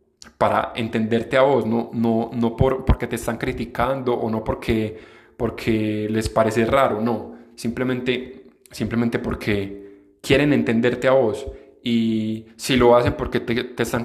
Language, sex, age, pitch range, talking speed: Spanish, male, 20-39, 110-130 Hz, 150 wpm